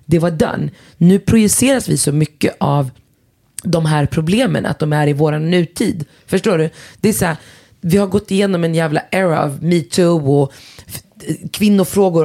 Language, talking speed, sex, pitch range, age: Swedish, 165 wpm, female, 155-195 Hz, 30-49